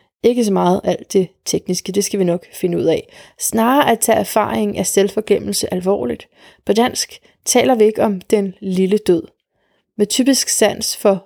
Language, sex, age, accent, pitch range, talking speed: Danish, female, 30-49, native, 195-235 Hz, 175 wpm